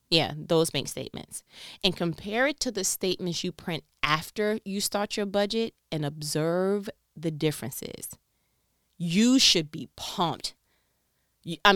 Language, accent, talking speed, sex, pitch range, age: English, American, 135 wpm, female, 165-240 Hz, 20-39